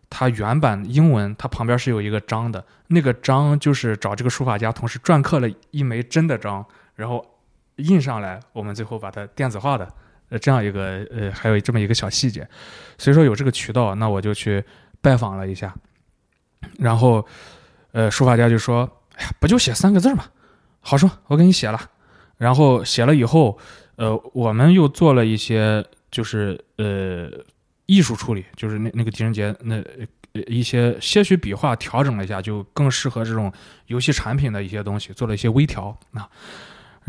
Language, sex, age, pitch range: Chinese, male, 20-39, 110-140 Hz